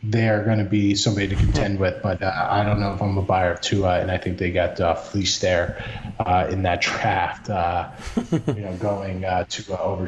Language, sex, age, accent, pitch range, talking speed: English, male, 20-39, American, 95-110 Hz, 225 wpm